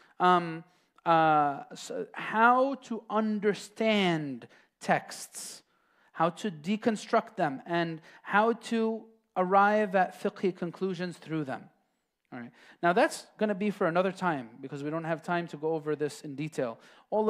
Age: 30-49